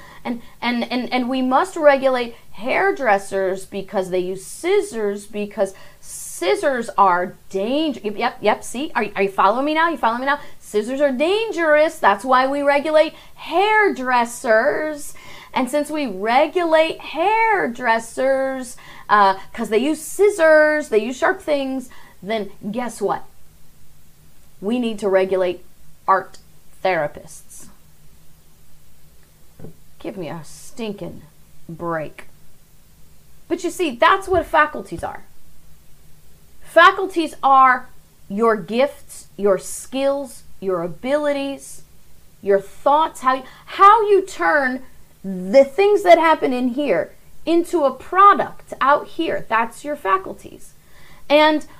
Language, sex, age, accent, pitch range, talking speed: English, female, 30-49, American, 205-310 Hz, 115 wpm